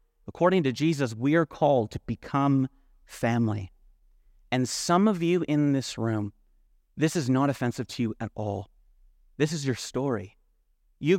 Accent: American